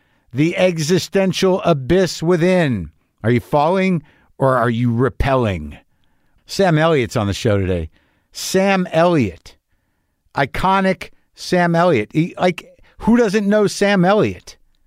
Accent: American